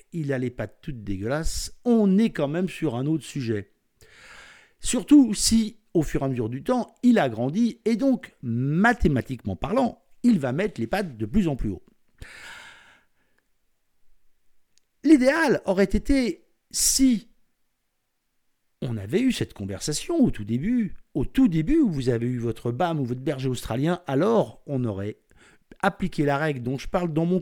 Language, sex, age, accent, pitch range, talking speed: French, male, 50-69, French, 130-215 Hz, 165 wpm